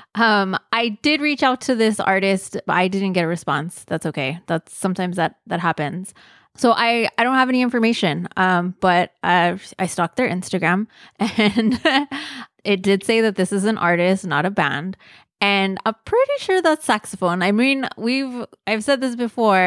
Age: 20-39